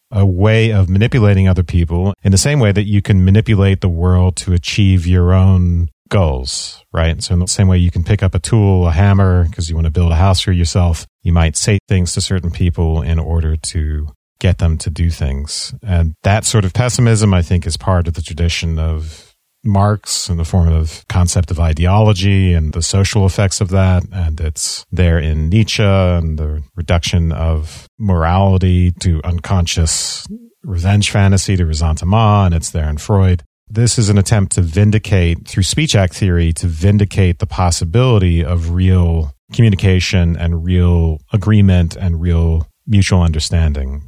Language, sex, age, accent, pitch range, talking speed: English, male, 40-59, American, 85-100 Hz, 180 wpm